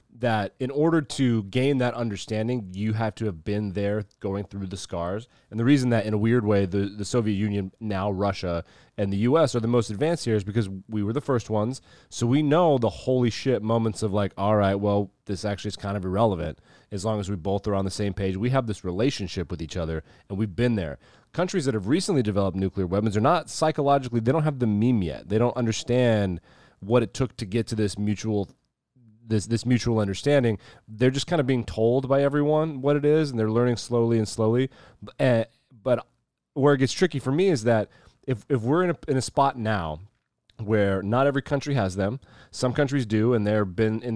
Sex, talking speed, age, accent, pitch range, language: male, 225 wpm, 30-49, American, 100-130 Hz, English